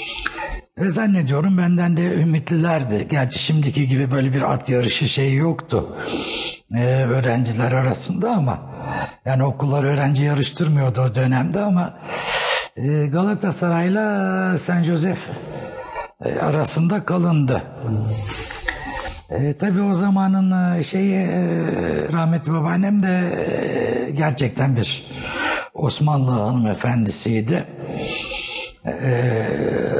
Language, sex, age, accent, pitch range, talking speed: Turkish, male, 60-79, native, 120-165 Hz, 90 wpm